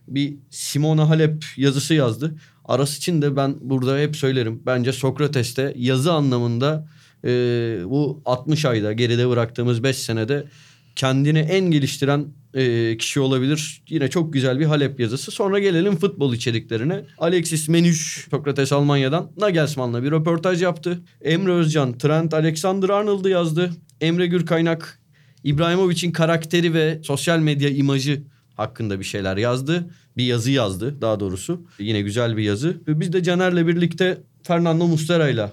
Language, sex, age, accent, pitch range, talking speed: Turkish, male, 30-49, native, 130-160 Hz, 140 wpm